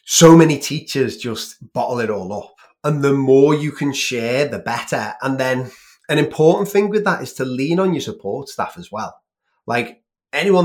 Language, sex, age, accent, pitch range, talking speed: English, male, 20-39, British, 120-155 Hz, 190 wpm